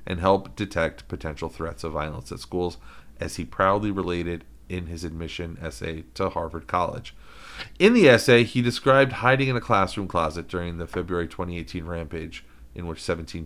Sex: male